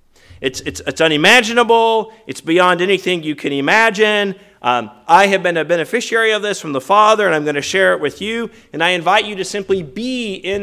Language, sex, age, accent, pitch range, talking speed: English, male, 40-59, American, 165-225 Hz, 210 wpm